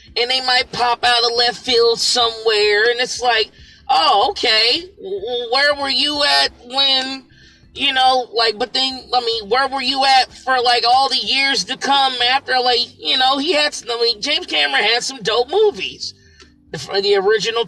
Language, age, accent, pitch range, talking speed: English, 30-49, American, 205-275 Hz, 185 wpm